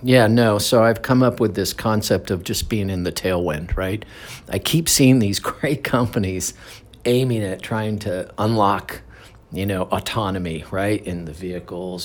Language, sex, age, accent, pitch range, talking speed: English, male, 50-69, American, 95-115 Hz, 170 wpm